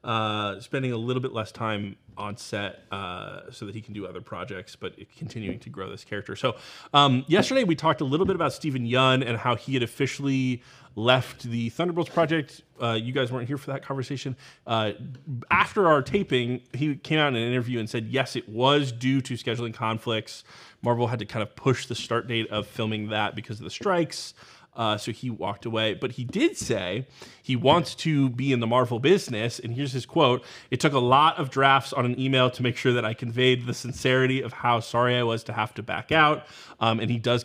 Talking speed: 220 wpm